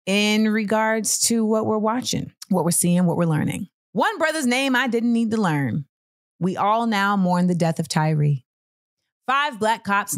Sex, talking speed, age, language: female, 185 wpm, 30-49, English